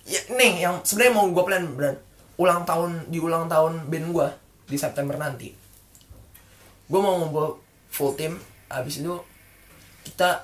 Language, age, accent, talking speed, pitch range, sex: Indonesian, 20-39, native, 150 wpm, 125-170 Hz, male